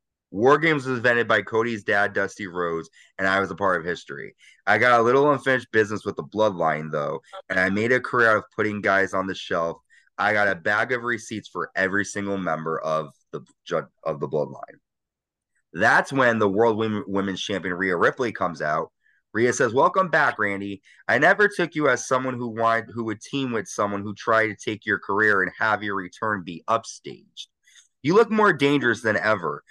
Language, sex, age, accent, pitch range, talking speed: English, male, 20-39, American, 95-130 Hz, 200 wpm